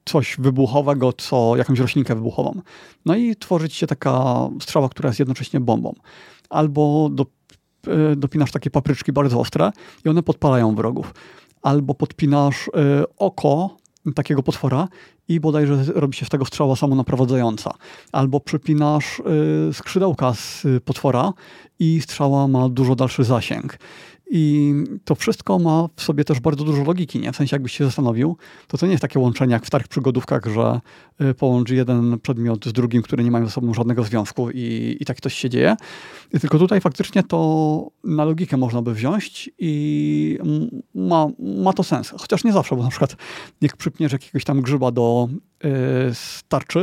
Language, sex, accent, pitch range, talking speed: Polish, male, native, 125-155 Hz, 160 wpm